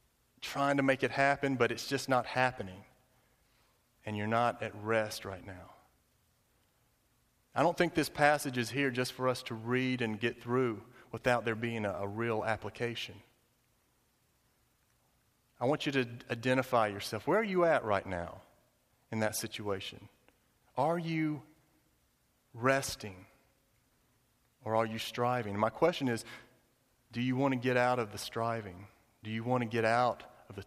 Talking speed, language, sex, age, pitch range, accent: 160 wpm, English, male, 40-59, 115-145 Hz, American